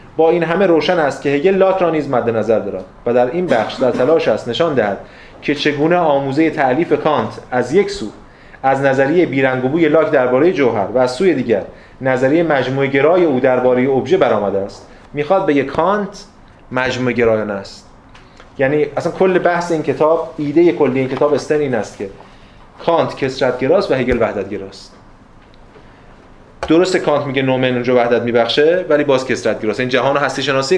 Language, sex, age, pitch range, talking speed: Persian, male, 30-49, 125-160 Hz, 170 wpm